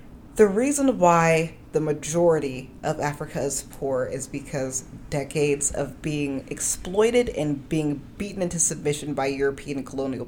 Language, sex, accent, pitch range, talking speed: English, female, American, 145-185 Hz, 135 wpm